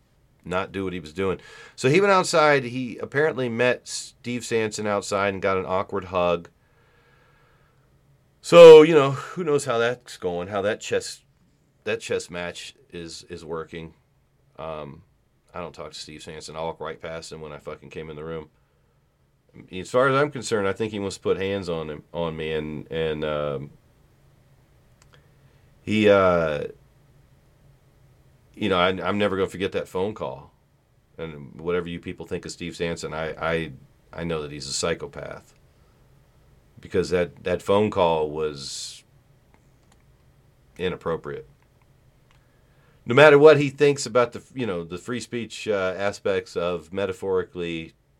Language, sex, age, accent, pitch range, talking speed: English, male, 40-59, American, 85-135 Hz, 160 wpm